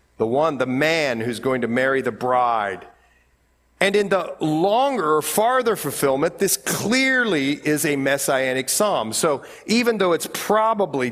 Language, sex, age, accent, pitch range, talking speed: English, male, 40-59, American, 125-195 Hz, 145 wpm